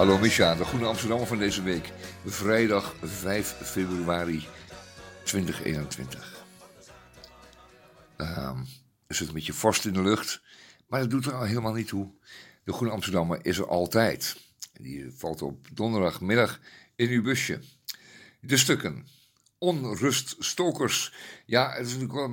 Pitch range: 90-120 Hz